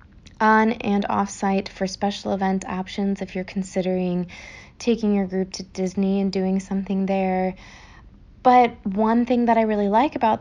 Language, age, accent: English, 20-39, American